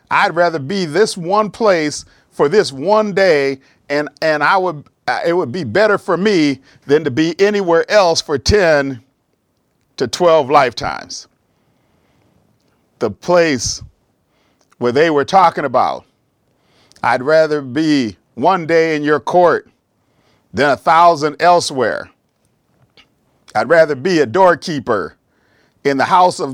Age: 50-69